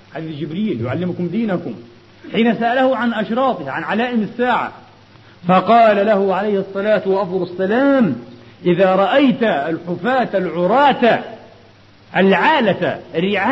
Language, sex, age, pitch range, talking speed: Arabic, male, 40-59, 185-245 Hz, 100 wpm